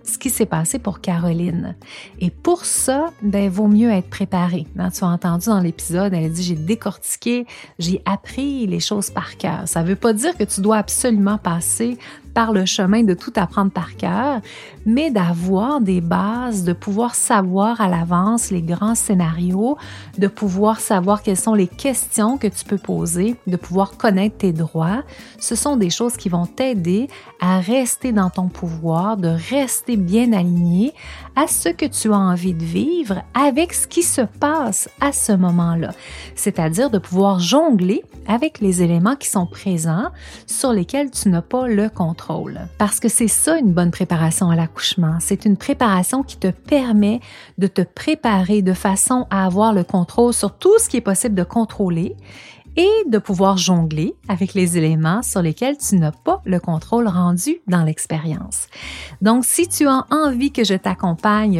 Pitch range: 180-235 Hz